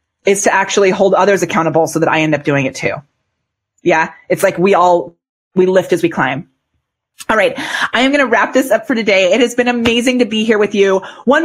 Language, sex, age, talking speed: English, female, 30-49, 235 wpm